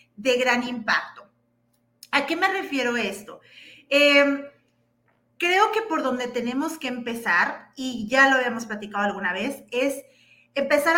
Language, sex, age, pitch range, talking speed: Spanish, female, 40-59, 230-330 Hz, 135 wpm